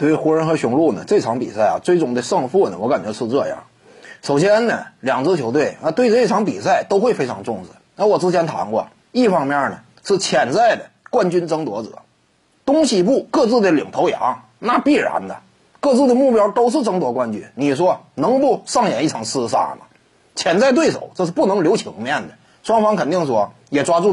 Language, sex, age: Chinese, male, 30-49